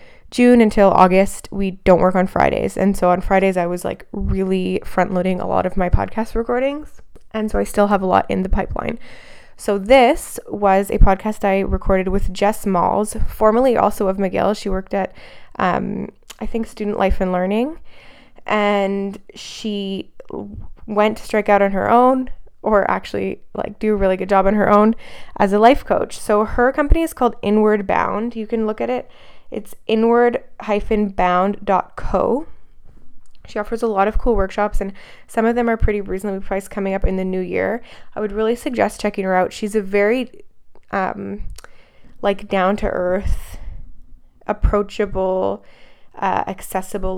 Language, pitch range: English, 190-215 Hz